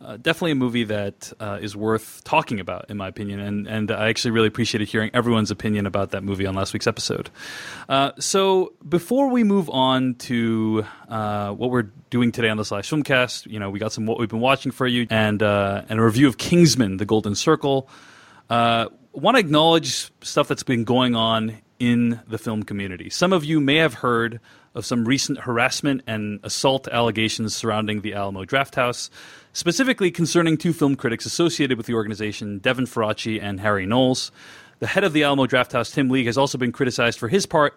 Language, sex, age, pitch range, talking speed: English, male, 30-49, 110-145 Hz, 200 wpm